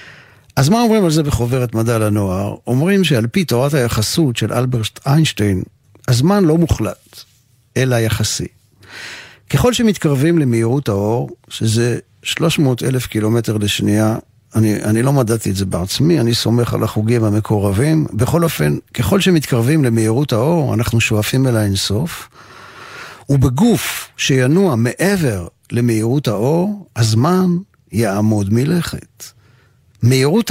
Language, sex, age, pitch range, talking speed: Hebrew, male, 50-69, 110-155 Hz, 120 wpm